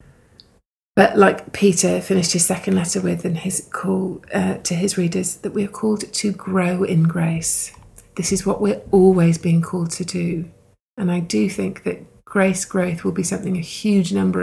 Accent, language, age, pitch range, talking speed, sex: British, English, 30-49, 170-190 Hz, 185 wpm, female